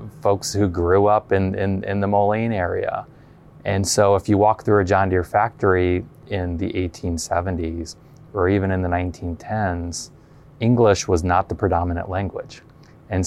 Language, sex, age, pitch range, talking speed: English, male, 20-39, 90-105 Hz, 155 wpm